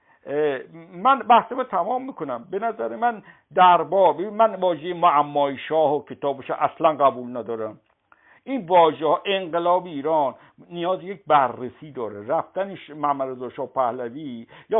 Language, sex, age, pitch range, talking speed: Persian, male, 60-79, 145-225 Hz, 125 wpm